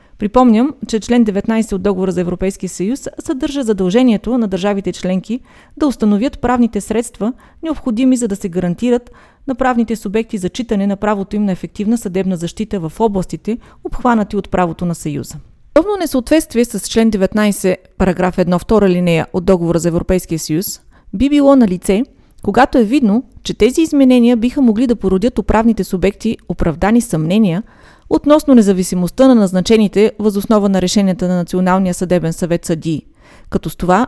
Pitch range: 185-240 Hz